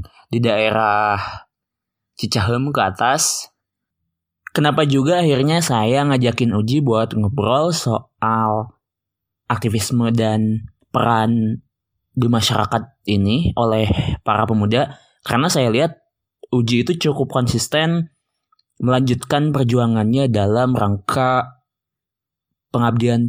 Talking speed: 90 wpm